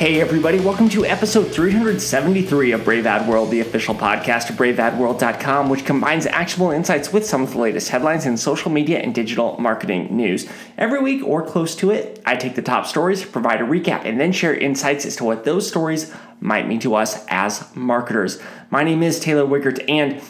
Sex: male